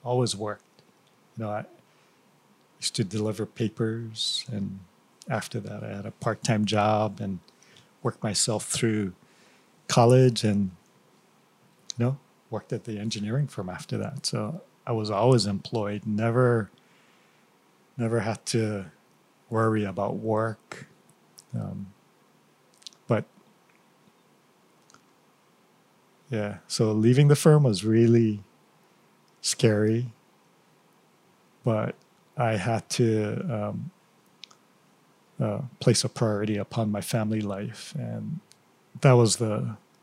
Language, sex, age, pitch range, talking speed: English, male, 40-59, 105-125 Hz, 105 wpm